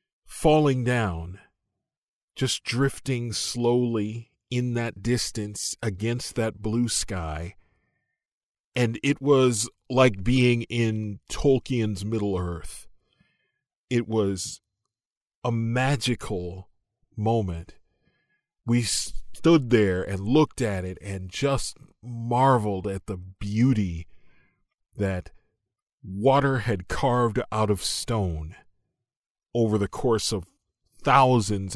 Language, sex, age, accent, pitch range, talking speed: English, male, 40-59, American, 95-120 Hz, 95 wpm